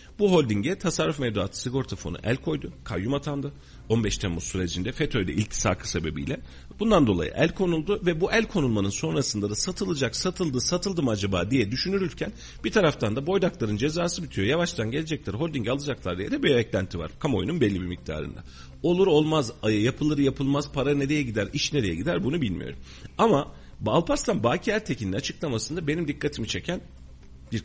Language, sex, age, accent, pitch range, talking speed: Turkish, male, 40-59, native, 85-145 Hz, 155 wpm